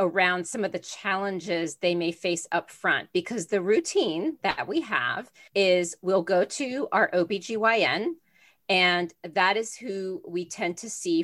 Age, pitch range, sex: 40-59, 170-200 Hz, female